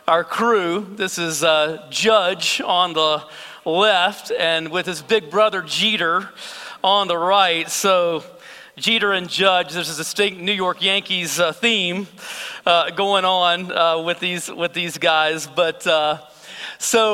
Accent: American